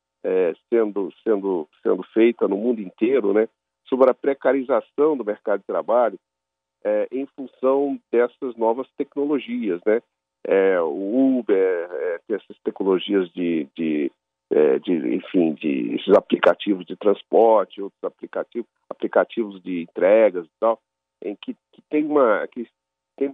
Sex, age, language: male, 50-69, Portuguese